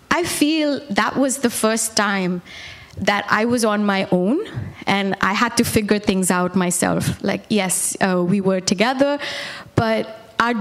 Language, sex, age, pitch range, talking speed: English, female, 20-39, 195-245 Hz, 165 wpm